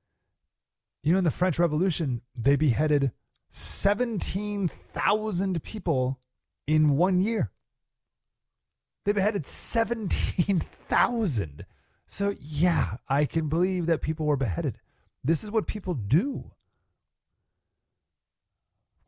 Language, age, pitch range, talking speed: English, 30-49, 100-160 Hz, 100 wpm